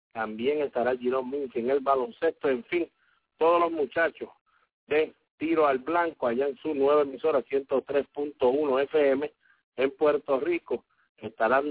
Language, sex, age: English, male, 50-69